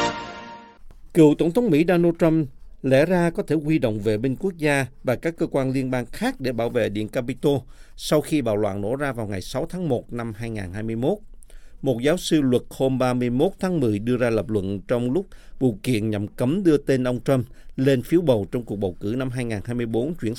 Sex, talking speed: male, 215 wpm